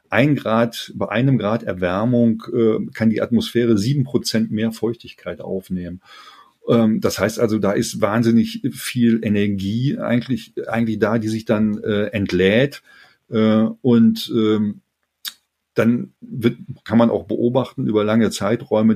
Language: German